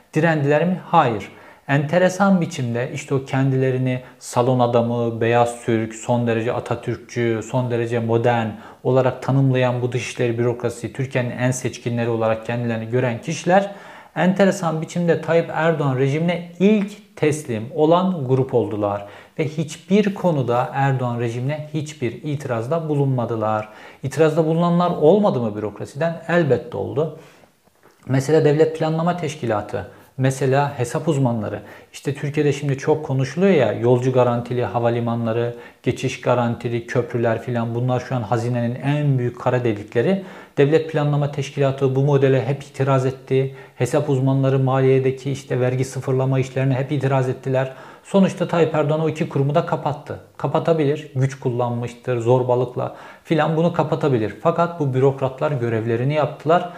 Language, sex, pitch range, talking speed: Turkish, male, 120-155 Hz, 130 wpm